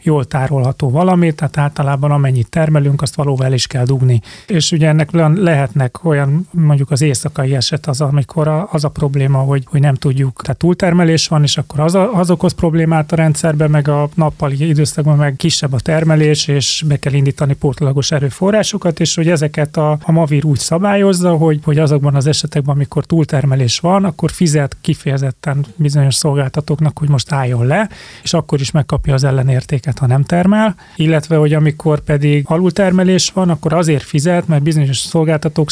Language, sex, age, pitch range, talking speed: Hungarian, male, 30-49, 140-160 Hz, 170 wpm